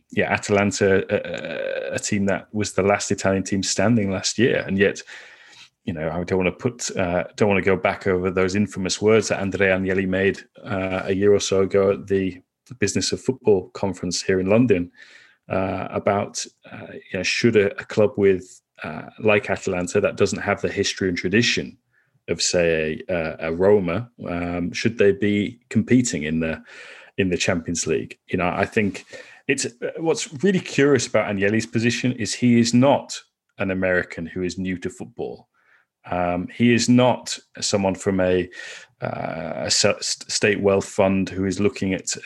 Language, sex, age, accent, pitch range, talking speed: English, male, 30-49, British, 95-105 Hz, 175 wpm